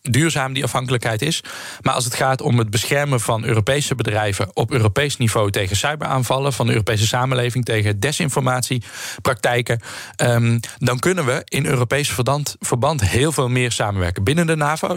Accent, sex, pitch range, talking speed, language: Dutch, male, 110-135 Hz, 150 wpm, Dutch